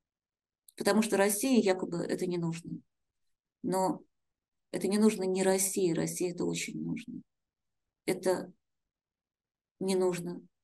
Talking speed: 115 wpm